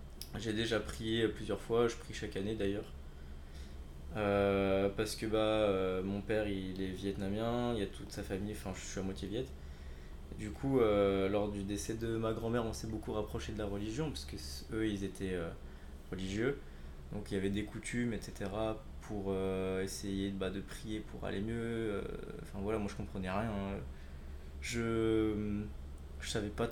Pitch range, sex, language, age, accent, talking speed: 75-110 Hz, male, French, 20-39, French, 185 wpm